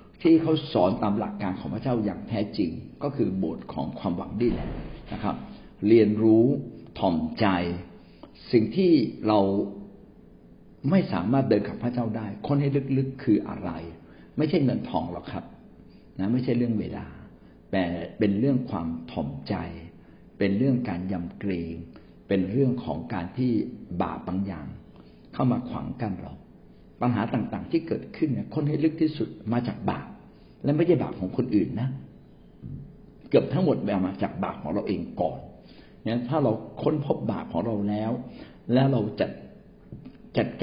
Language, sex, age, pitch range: Thai, male, 60-79, 90-120 Hz